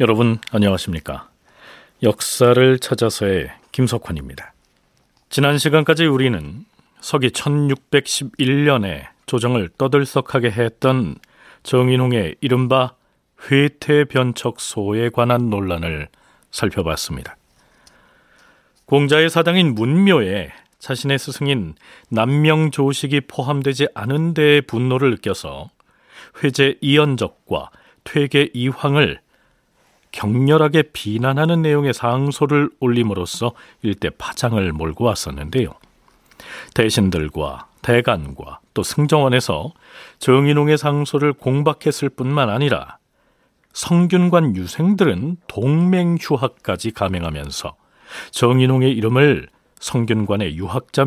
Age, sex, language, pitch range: 40-59, male, Korean, 110-145 Hz